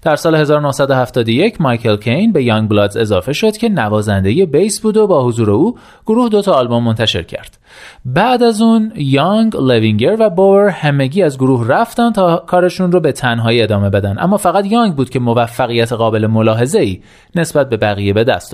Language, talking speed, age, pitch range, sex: Persian, 175 wpm, 30-49, 115-180 Hz, male